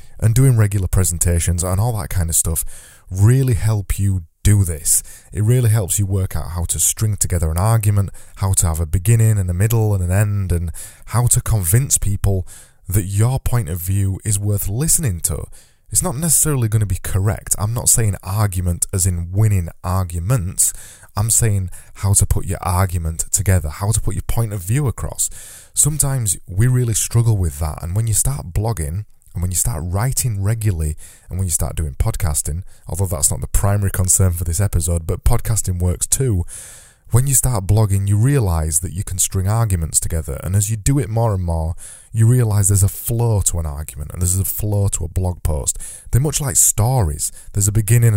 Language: English